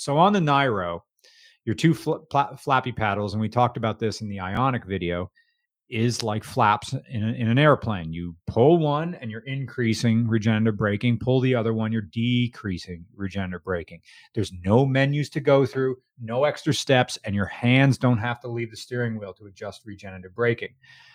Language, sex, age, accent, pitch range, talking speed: English, male, 30-49, American, 110-140 Hz, 185 wpm